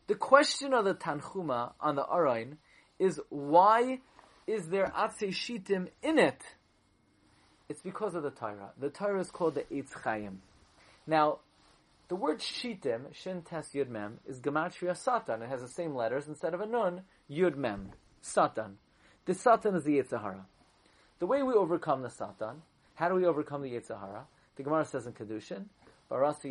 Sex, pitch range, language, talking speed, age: male, 130-180 Hz, English, 160 wpm, 30-49